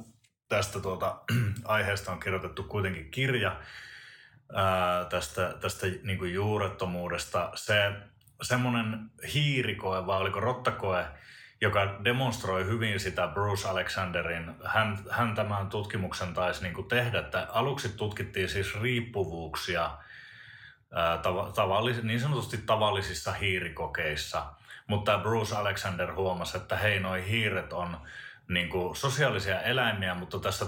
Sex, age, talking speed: male, 30-49, 110 wpm